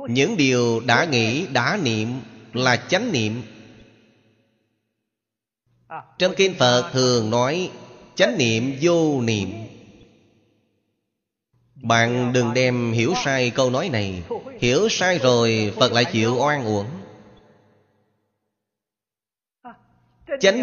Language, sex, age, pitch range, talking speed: Vietnamese, male, 30-49, 115-140 Hz, 100 wpm